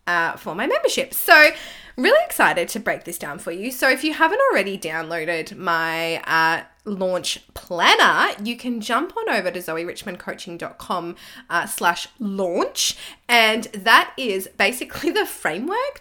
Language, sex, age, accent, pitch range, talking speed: English, female, 20-39, Australian, 185-295 Hz, 145 wpm